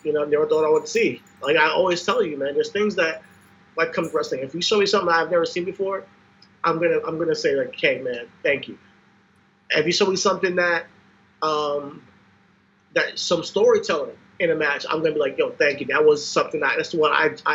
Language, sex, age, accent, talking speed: English, male, 30-49, American, 225 wpm